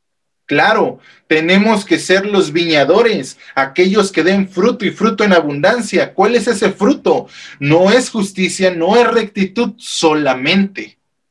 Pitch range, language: 140-195 Hz, Spanish